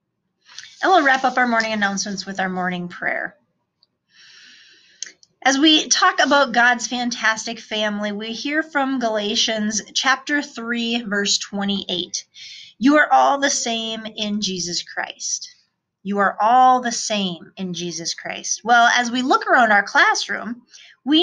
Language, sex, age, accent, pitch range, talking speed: English, female, 30-49, American, 195-255 Hz, 140 wpm